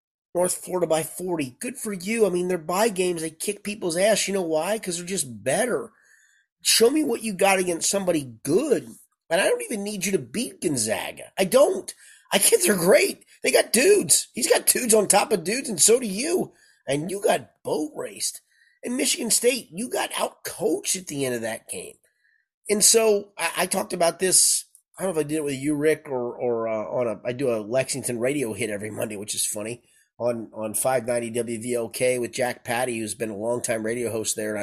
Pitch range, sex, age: 135-210 Hz, male, 30-49